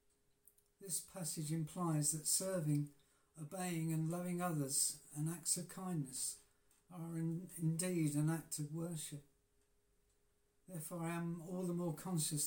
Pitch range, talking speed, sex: 145-175 Hz, 125 wpm, male